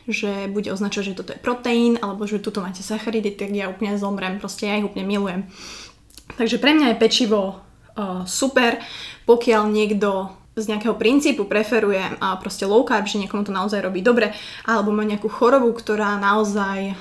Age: 20-39